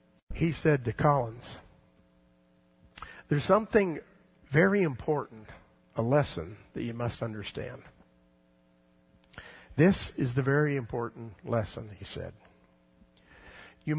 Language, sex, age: English, male, 50-69